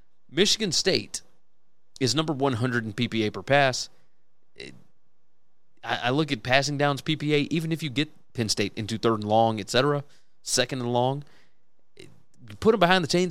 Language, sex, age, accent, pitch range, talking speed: English, male, 30-49, American, 120-165 Hz, 160 wpm